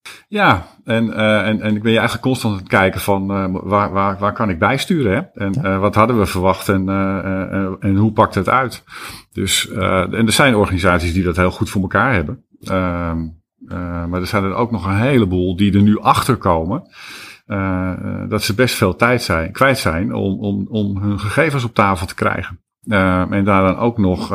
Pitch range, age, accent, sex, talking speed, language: 90-110 Hz, 50-69, Dutch, male, 200 wpm, Dutch